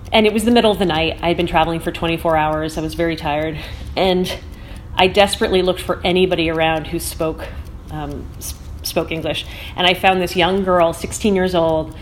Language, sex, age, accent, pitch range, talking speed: English, female, 30-49, American, 165-195 Hz, 205 wpm